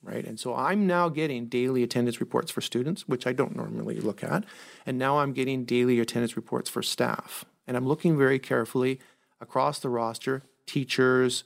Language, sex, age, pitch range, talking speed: English, male, 40-59, 120-140 Hz, 185 wpm